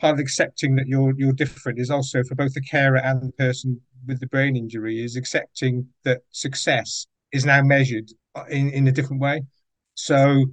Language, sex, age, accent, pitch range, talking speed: English, male, 50-69, British, 130-145 Hz, 190 wpm